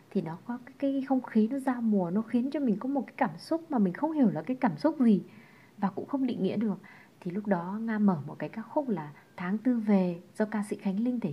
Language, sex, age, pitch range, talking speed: Vietnamese, female, 20-39, 180-245 Hz, 275 wpm